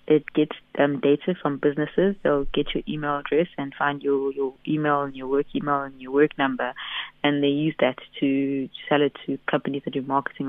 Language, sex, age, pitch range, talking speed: English, female, 20-39, 140-150 Hz, 205 wpm